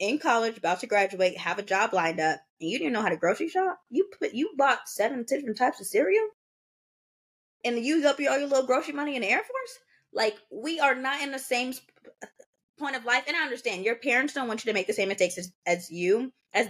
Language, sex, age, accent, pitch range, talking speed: English, female, 20-39, American, 190-265 Hz, 250 wpm